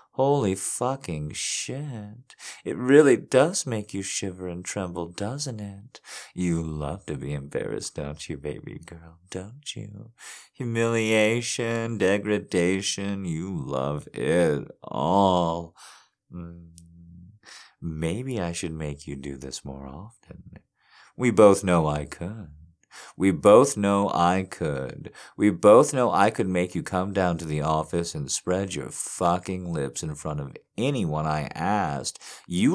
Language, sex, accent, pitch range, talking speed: English, male, American, 85-125 Hz, 135 wpm